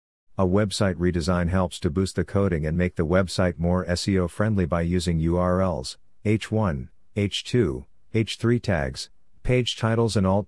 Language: English